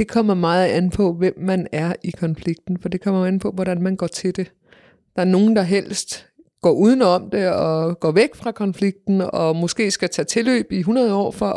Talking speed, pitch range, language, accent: 220 wpm, 185-230 Hz, Danish, native